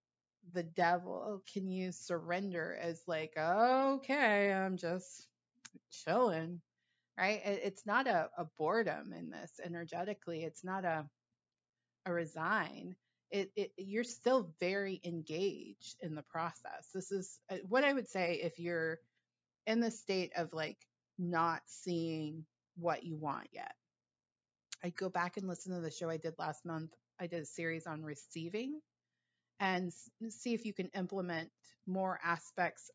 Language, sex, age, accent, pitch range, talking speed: English, female, 30-49, American, 160-190 Hz, 145 wpm